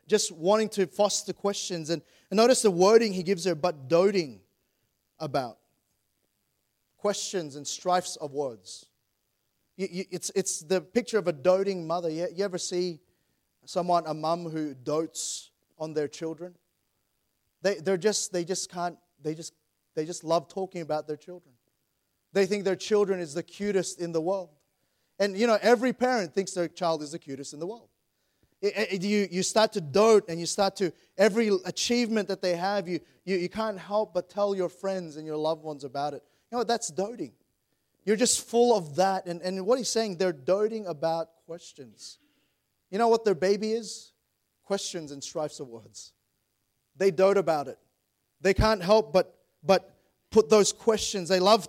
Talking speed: 180 wpm